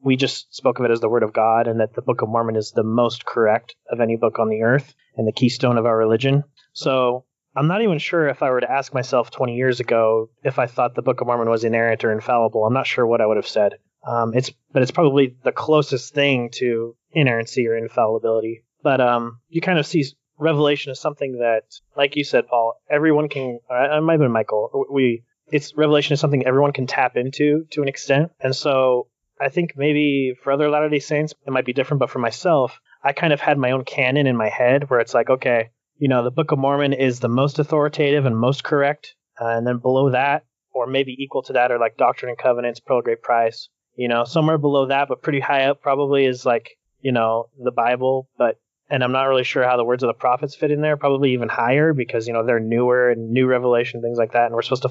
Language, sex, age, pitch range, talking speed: English, male, 30-49, 120-145 Hz, 240 wpm